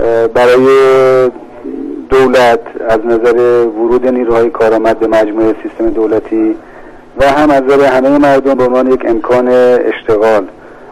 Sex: male